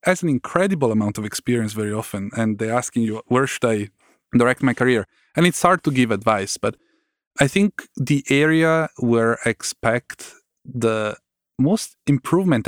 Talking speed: 165 wpm